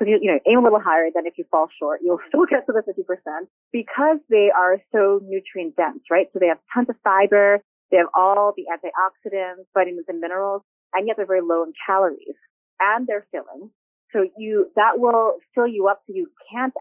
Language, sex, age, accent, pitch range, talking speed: English, female, 30-49, American, 175-235 Hz, 205 wpm